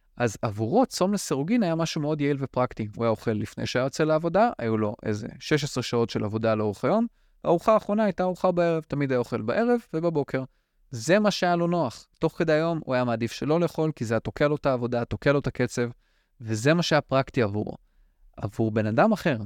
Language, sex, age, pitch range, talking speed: Hebrew, male, 20-39, 115-160 Hz, 205 wpm